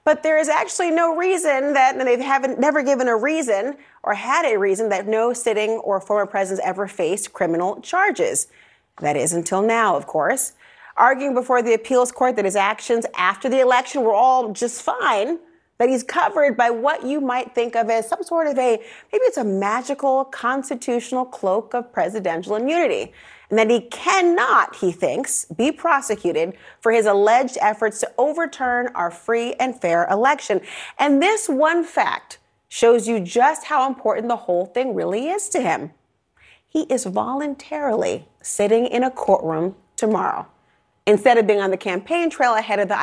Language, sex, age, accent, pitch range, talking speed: English, female, 30-49, American, 215-290 Hz, 175 wpm